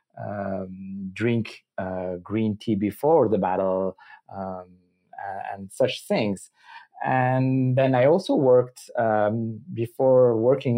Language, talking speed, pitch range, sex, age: English, 110 wpm, 100-135 Hz, male, 30-49